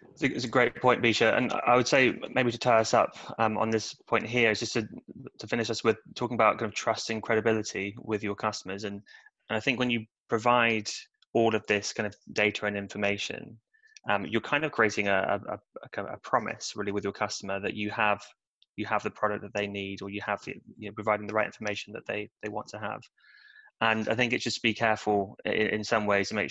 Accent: British